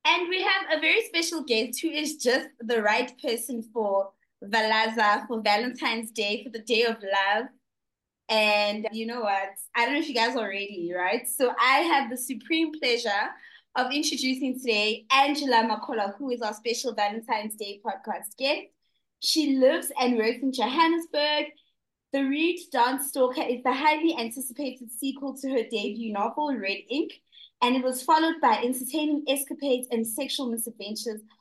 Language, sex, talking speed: English, female, 165 wpm